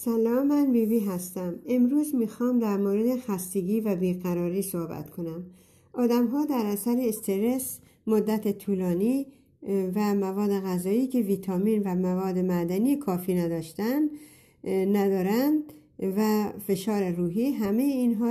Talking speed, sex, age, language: 120 wpm, female, 60-79, Persian